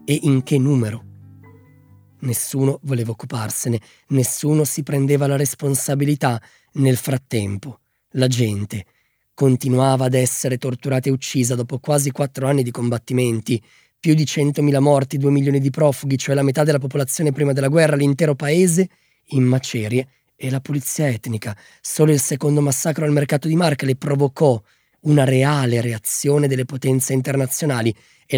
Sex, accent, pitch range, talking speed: male, native, 115-140 Hz, 145 wpm